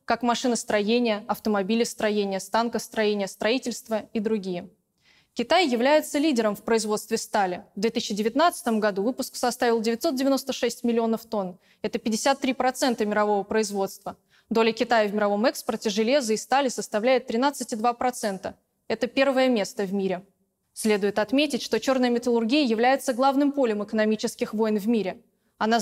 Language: Russian